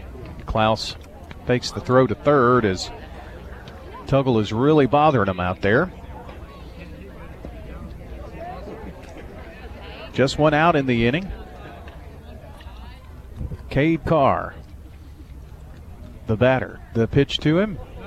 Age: 40-59